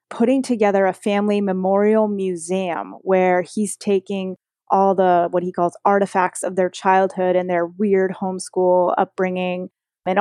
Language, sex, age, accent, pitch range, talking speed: English, female, 20-39, American, 180-200 Hz, 140 wpm